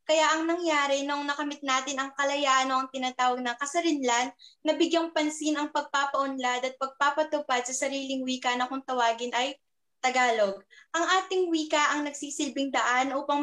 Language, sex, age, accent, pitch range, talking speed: Filipino, female, 20-39, native, 255-300 Hz, 150 wpm